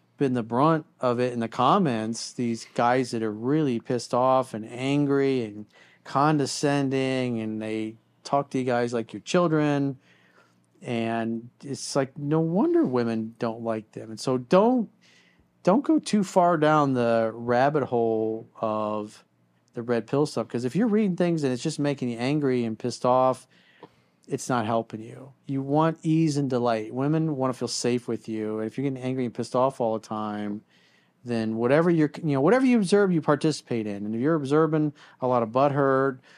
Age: 40-59